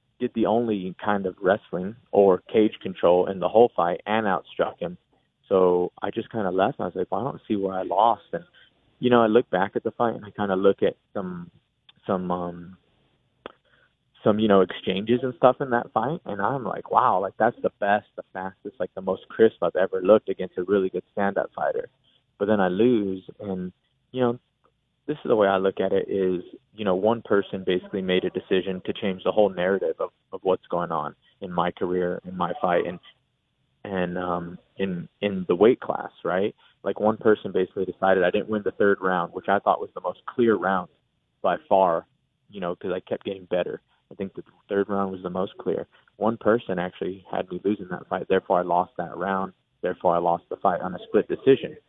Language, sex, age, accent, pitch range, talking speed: English, male, 20-39, American, 90-110 Hz, 220 wpm